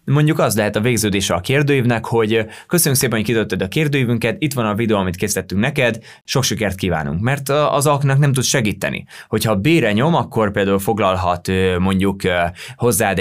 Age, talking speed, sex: 20-39, 175 wpm, male